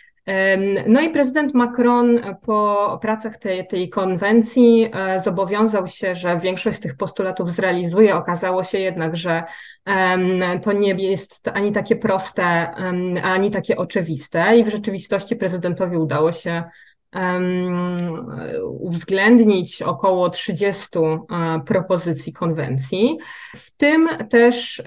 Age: 20-39